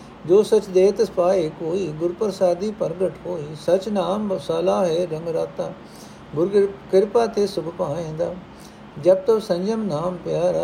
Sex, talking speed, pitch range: male, 130 wpm, 165-195 Hz